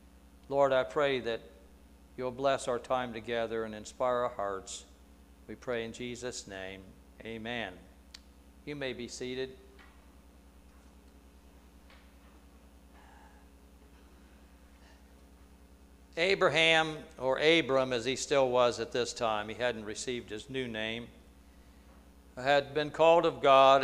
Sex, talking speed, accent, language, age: male, 110 wpm, American, English, 60-79